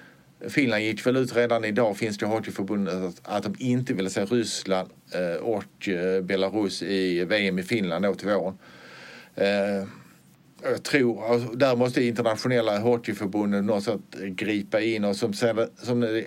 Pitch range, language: 95-115 Hz, Swedish